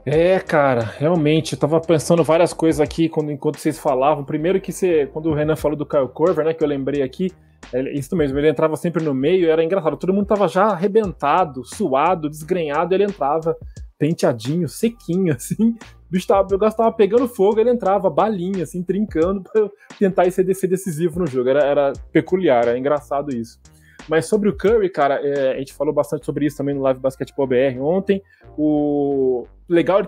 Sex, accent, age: male, Brazilian, 20-39